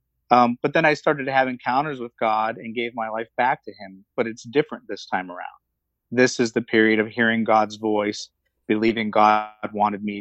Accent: American